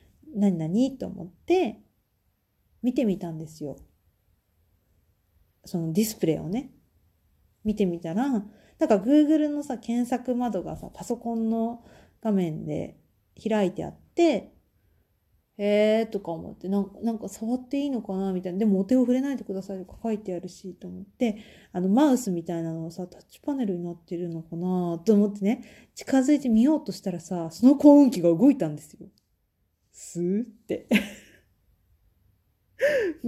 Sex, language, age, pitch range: female, Japanese, 40-59, 170-250 Hz